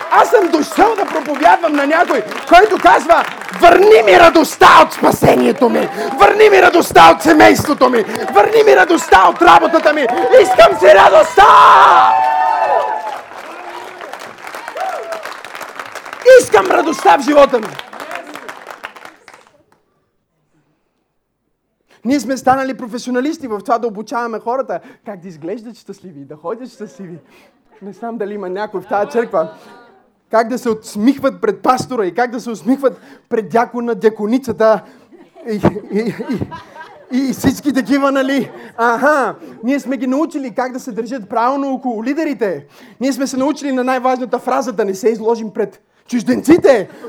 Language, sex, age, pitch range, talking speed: Bulgarian, male, 40-59, 220-315 Hz, 135 wpm